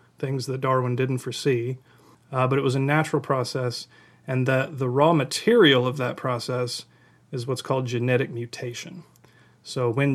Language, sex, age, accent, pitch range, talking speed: English, male, 30-49, American, 120-140 Hz, 160 wpm